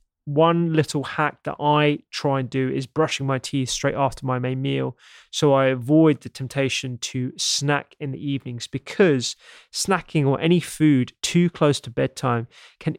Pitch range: 130-150 Hz